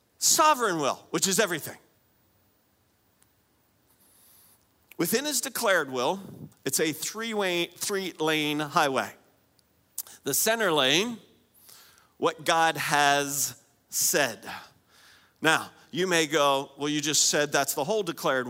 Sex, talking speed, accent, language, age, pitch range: male, 105 wpm, American, English, 40-59, 145-210 Hz